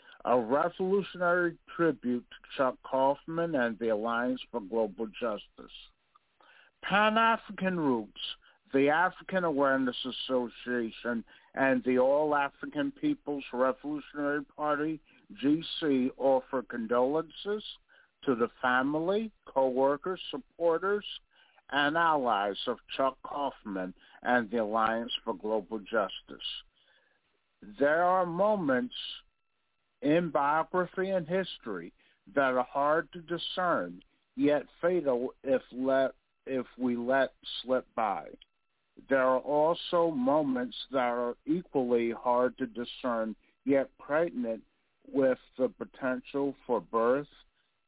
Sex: male